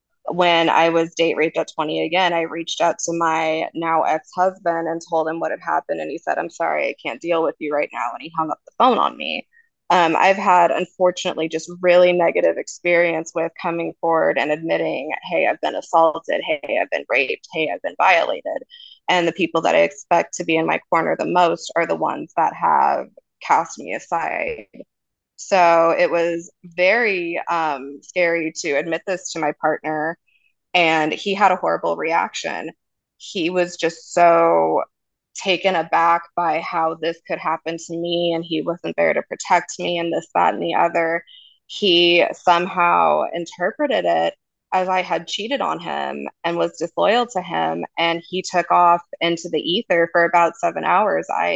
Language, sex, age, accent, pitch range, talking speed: English, female, 20-39, American, 165-180 Hz, 185 wpm